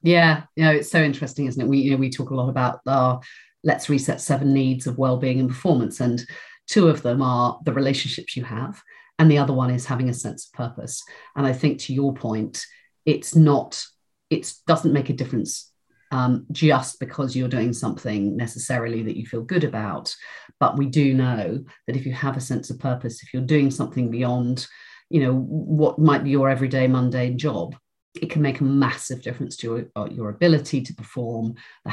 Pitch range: 125-150 Hz